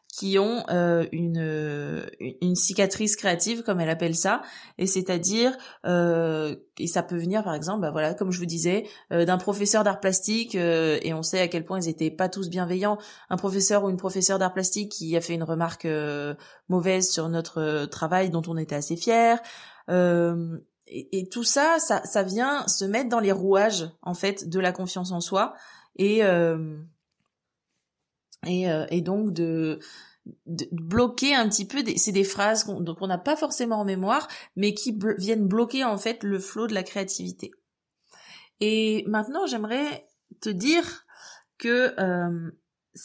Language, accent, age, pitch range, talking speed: French, French, 20-39, 170-215 Hz, 175 wpm